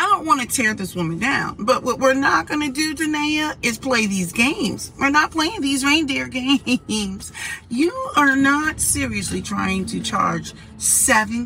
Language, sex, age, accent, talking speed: English, female, 40-59, American, 170 wpm